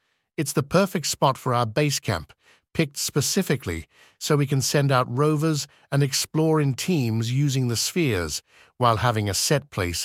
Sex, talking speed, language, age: male, 165 wpm, English, 50-69